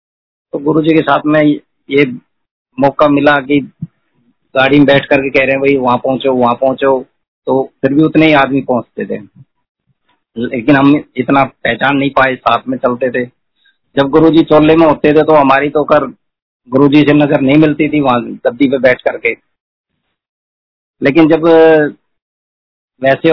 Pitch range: 125-150 Hz